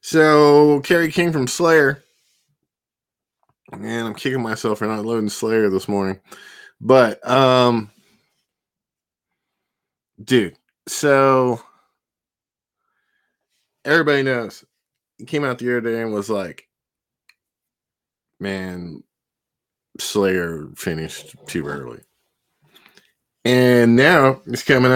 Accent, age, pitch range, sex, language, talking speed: American, 20-39, 100-130 Hz, male, English, 95 wpm